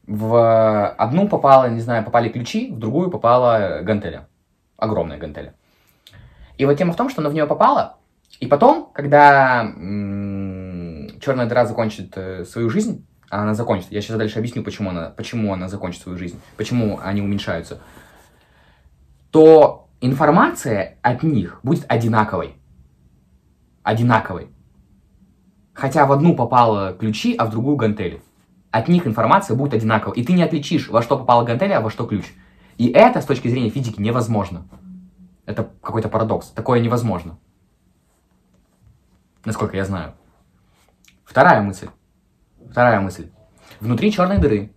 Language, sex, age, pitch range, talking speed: Russian, male, 20-39, 95-130 Hz, 140 wpm